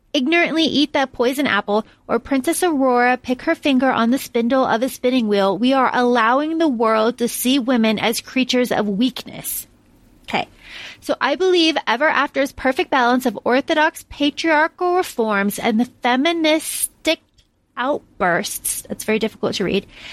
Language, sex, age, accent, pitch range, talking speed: English, female, 30-49, American, 230-300 Hz, 150 wpm